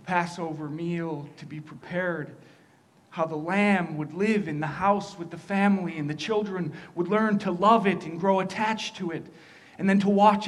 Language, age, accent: English, 40-59, American